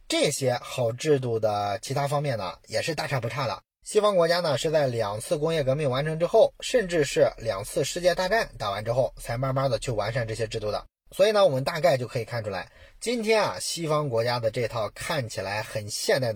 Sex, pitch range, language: male, 115-150 Hz, Chinese